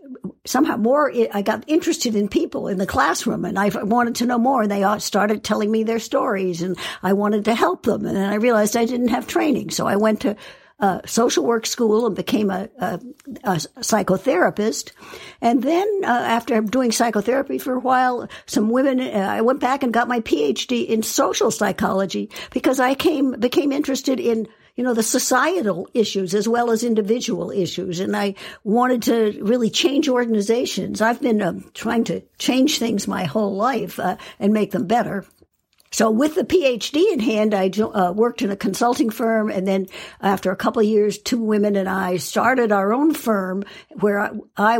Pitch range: 200-250 Hz